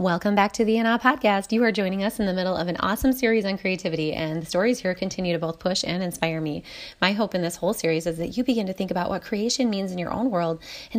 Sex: female